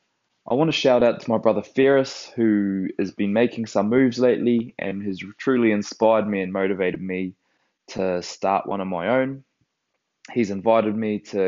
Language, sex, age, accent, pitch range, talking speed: English, male, 20-39, Australian, 95-115 Hz, 170 wpm